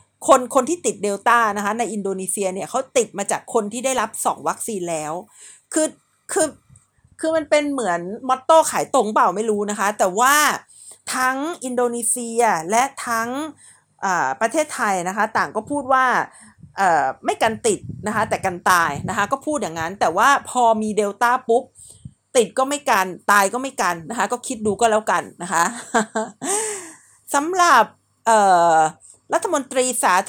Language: Thai